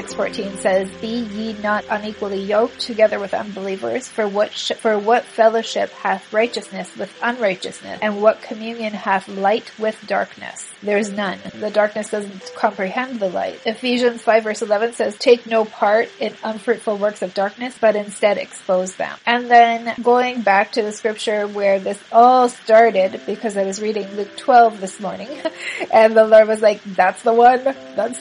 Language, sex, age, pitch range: English, female, 30-49, 200-235 Hz